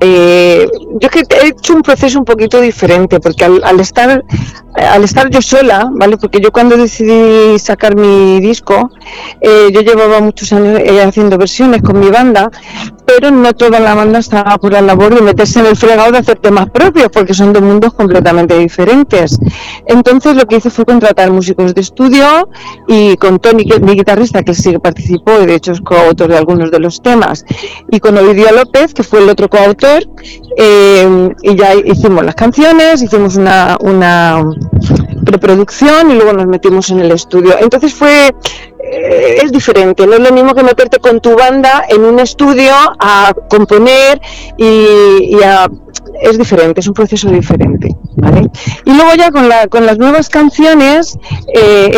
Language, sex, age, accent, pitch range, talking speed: Spanish, female, 40-59, Spanish, 195-255 Hz, 175 wpm